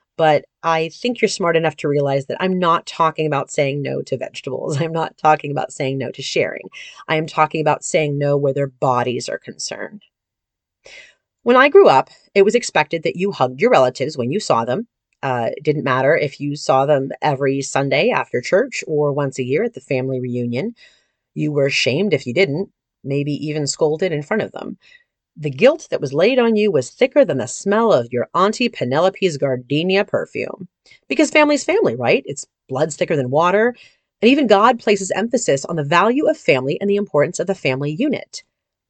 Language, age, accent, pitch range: English, 30-49, American, 140-230 Hz